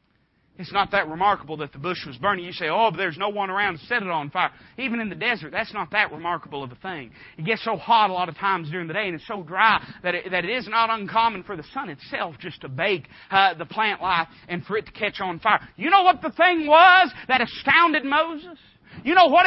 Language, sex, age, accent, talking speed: English, male, 40-59, American, 260 wpm